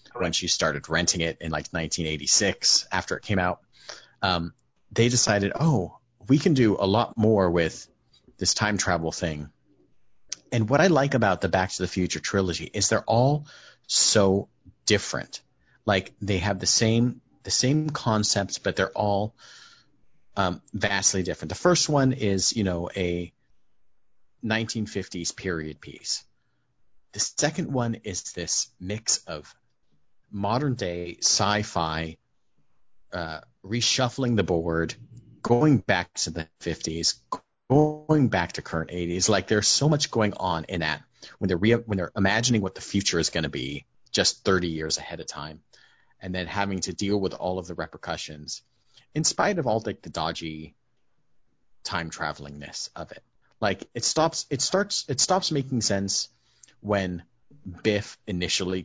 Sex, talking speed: male, 155 wpm